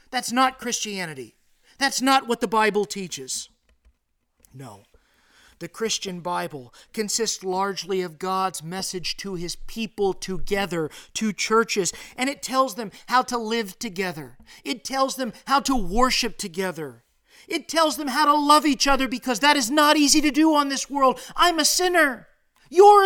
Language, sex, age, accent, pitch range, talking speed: English, male, 40-59, American, 215-300 Hz, 160 wpm